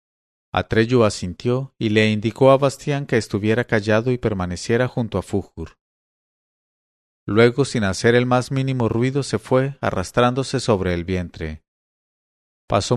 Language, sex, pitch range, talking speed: English, male, 95-130 Hz, 135 wpm